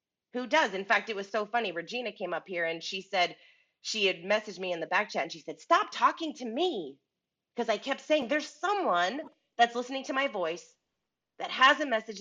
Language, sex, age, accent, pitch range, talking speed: English, female, 30-49, American, 180-255 Hz, 220 wpm